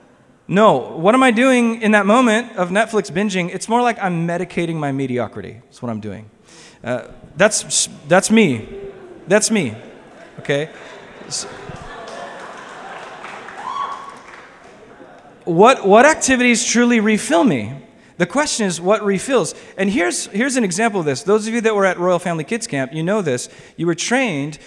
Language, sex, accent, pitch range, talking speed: English, male, American, 150-225 Hz, 155 wpm